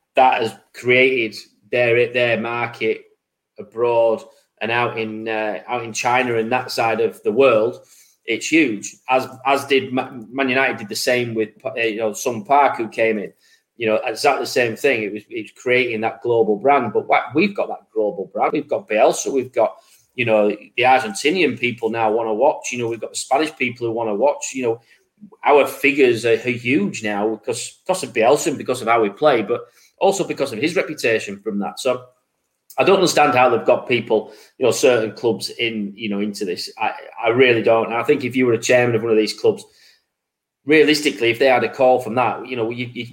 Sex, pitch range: male, 115-150 Hz